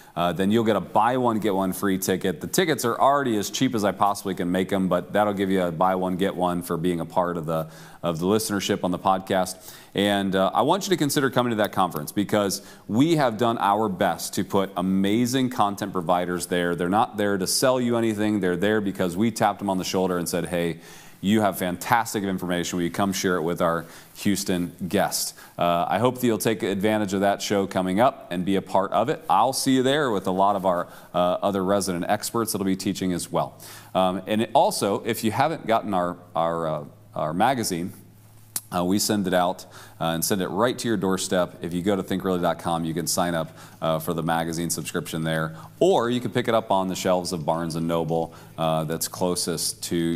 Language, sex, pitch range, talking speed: English, male, 90-105 Hz, 230 wpm